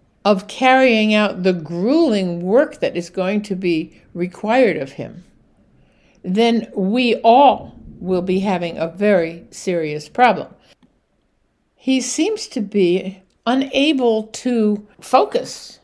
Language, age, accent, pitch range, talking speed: English, 60-79, American, 195-255 Hz, 115 wpm